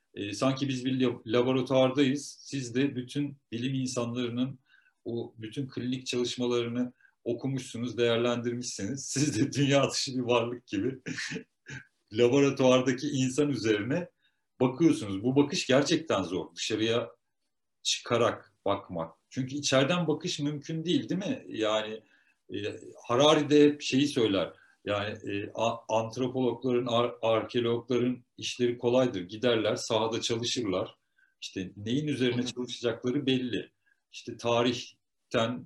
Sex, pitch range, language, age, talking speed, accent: male, 110-140 Hz, Turkish, 50-69, 110 wpm, native